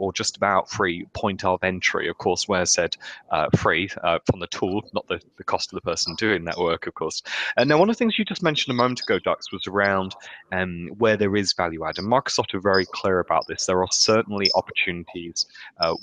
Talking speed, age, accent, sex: 235 wpm, 20-39, British, male